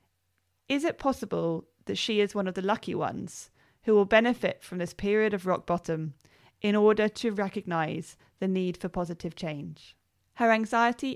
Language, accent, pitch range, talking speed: English, British, 160-220 Hz, 165 wpm